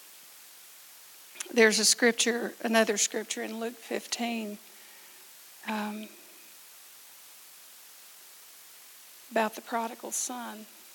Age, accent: 50-69, American